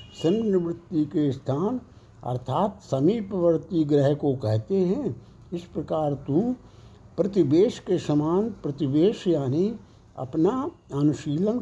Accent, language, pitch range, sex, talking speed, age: native, Hindi, 140-195 Hz, male, 100 wpm, 60-79